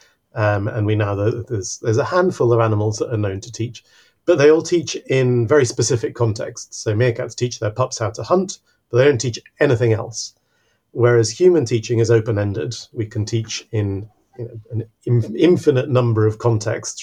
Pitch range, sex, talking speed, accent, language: 110-125 Hz, male, 195 wpm, British, English